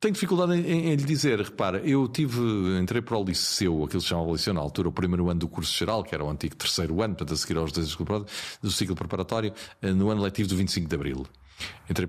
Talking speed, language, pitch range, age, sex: 250 wpm, Portuguese, 90-125 Hz, 40-59, male